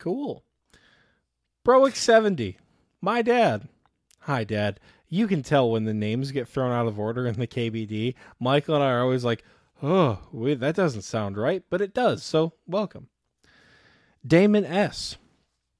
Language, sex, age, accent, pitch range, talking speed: English, male, 20-39, American, 115-190 Hz, 145 wpm